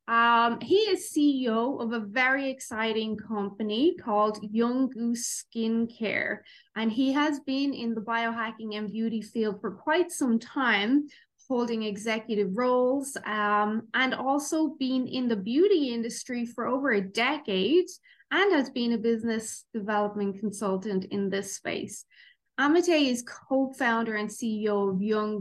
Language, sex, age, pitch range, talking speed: English, female, 20-39, 220-265 Hz, 140 wpm